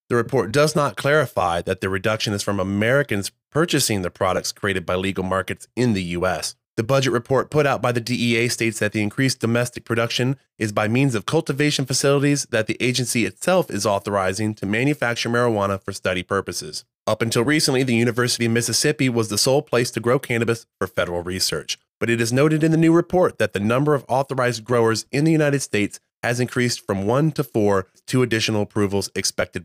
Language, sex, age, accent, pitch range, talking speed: English, male, 20-39, American, 110-140 Hz, 200 wpm